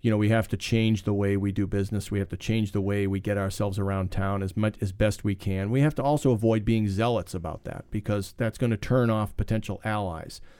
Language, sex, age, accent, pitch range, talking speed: English, male, 40-59, American, 100-115 Hz, 255 wpm